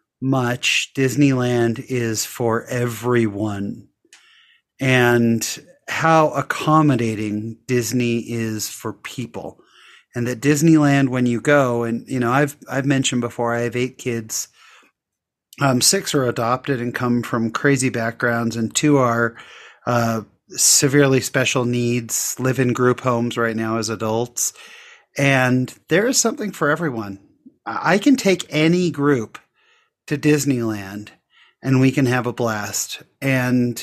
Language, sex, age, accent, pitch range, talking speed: English, male, 30-49, American, 120-145 Hz, 130 wpm